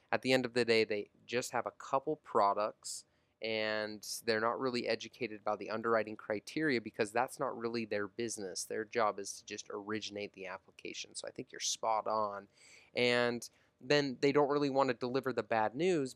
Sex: male